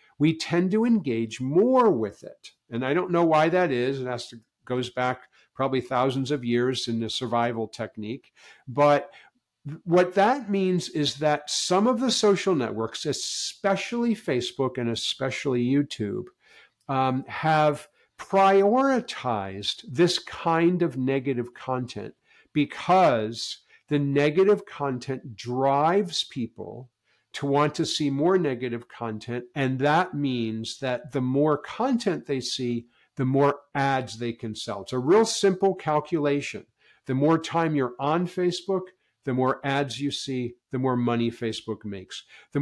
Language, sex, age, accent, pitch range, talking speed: English, male, 50-69, American, 120-160 Hz, 140 wpm